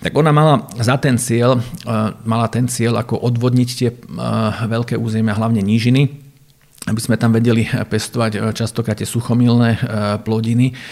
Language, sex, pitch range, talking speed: Slovak, male, 110-125 Hz, 135 wpm